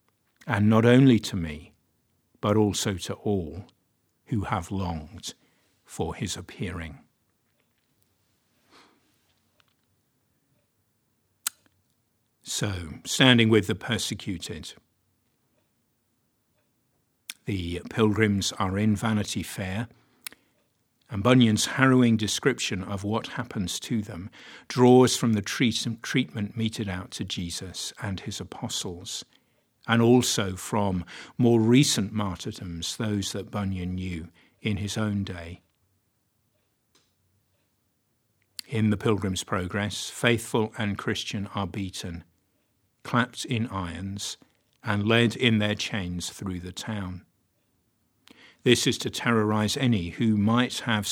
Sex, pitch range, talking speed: male, 95-115 Hz, 105 wpm